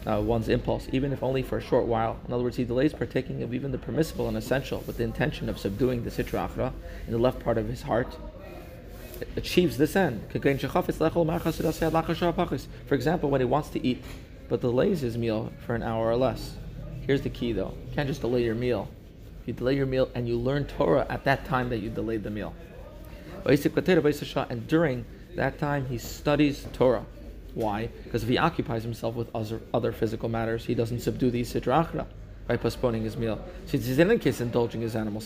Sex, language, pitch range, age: male, English, 115-140 Hz, 30-49